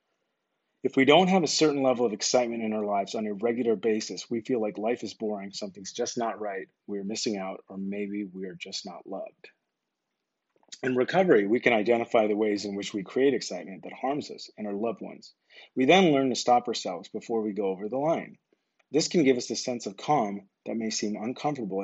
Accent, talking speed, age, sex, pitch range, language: American, 215 wpm, 30-49, male, 100-130 Hz, English